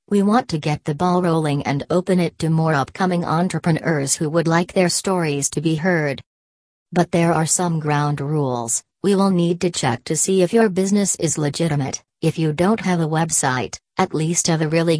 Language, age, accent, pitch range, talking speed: English, 40-59, American, 150-180 Hz, 205 wpm